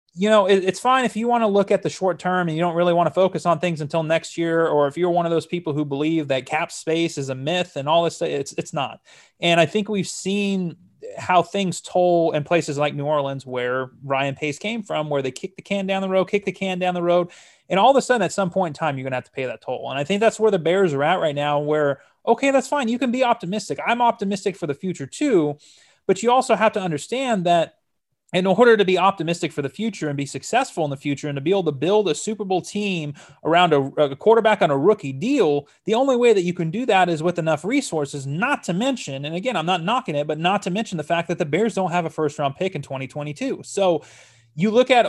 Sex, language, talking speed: male, English, 270 wpm